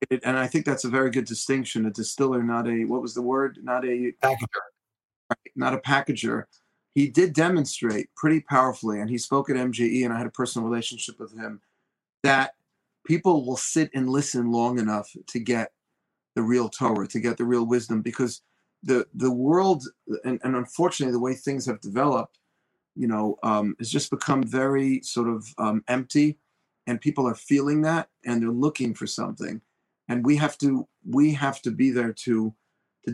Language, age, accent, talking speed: English, 40-59, American, 185 wpm